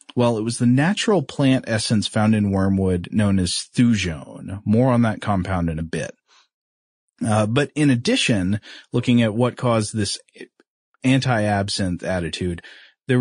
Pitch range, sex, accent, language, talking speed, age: 100-125 Hz, male, American, English, 145 wpm, 30-49